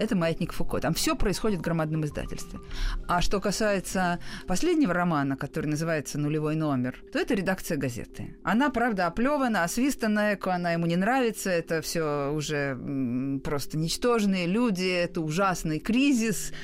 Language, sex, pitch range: Russian, female, 150-205 Hz